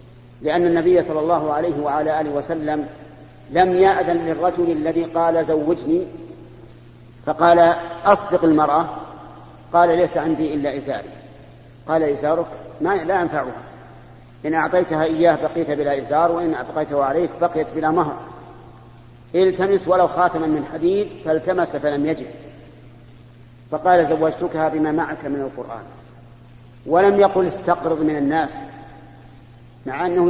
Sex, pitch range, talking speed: male, 130-175 Hz, 120 wpm